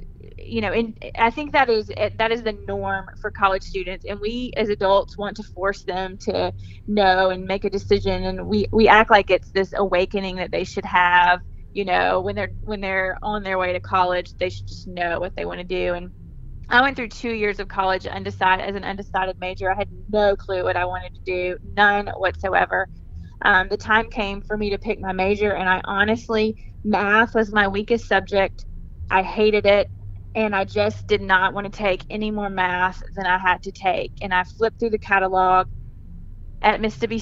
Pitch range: 185-210 Hz